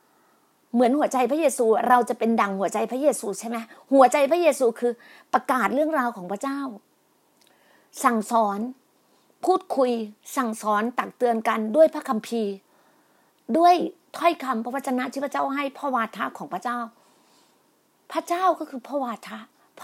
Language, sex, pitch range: Thai, female, 230-315 Hz